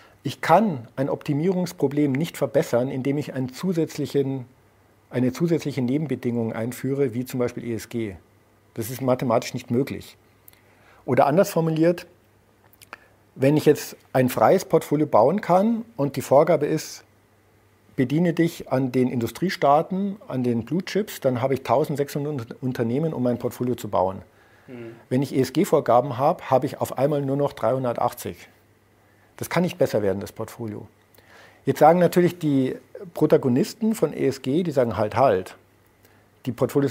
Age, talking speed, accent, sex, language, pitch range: 50-69, 140 wpm, German, male, German, 110-145 Hz